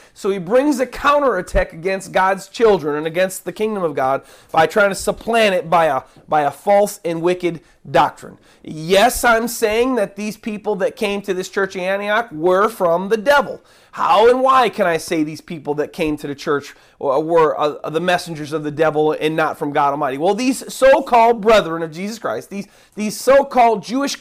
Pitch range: 180-245 Hz